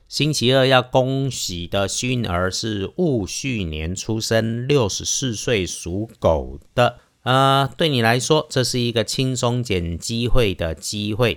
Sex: male